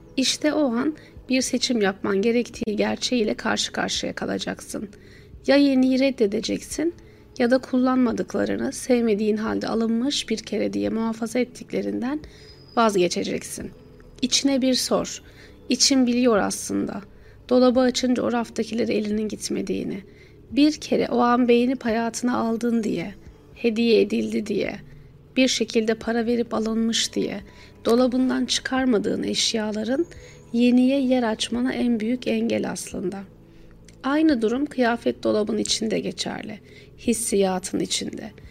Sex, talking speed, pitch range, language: female, 115 wpm, 220-255 Hz, Turkish